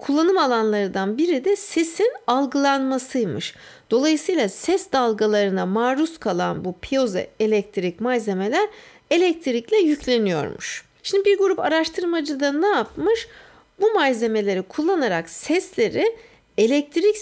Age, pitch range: 60-79, 225-360 Hz